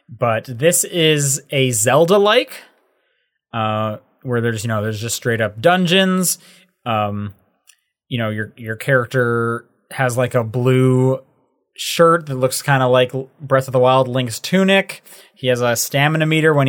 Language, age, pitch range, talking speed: English, 20-39, 120-155 Hz, 160 wpm